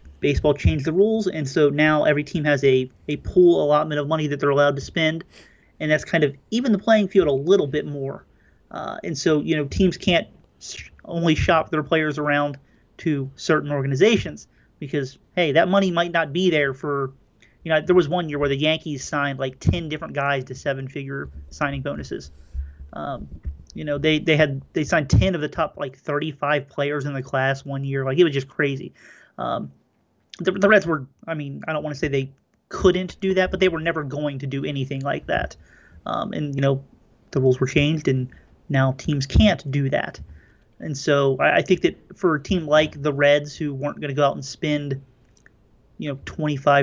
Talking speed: 210 wpm